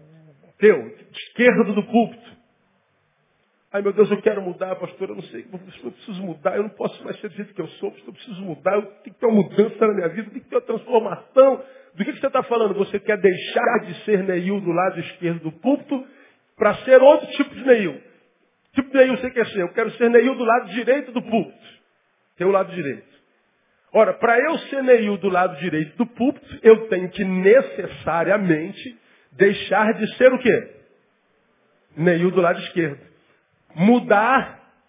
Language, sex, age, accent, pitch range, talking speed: Portuguese, male, 50-69, Brazilian, 185-255 Hz, 180 wpm